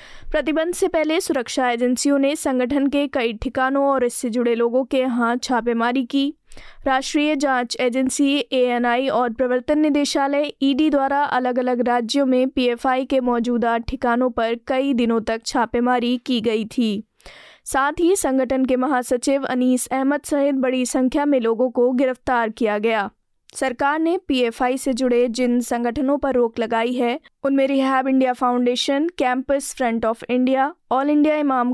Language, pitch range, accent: Hindi, 235-275 Hz, native